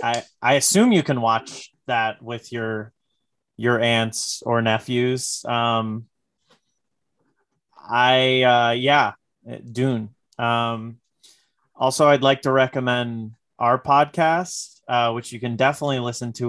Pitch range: 115-130 Hz